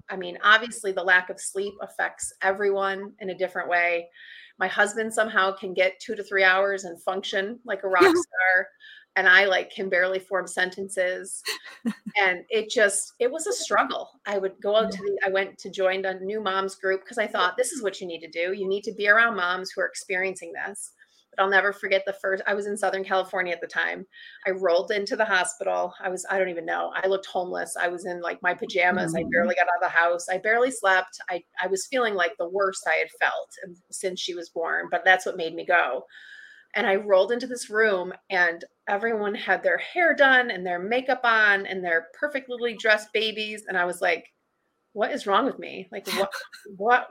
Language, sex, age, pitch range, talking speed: English, female, 30-49, 185-215 Hz, 220 wpm